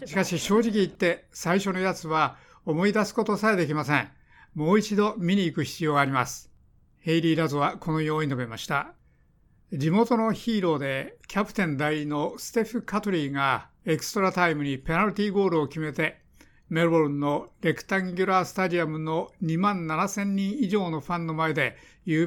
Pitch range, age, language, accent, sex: 155-195 Hz, 60-79, Japanese, native, male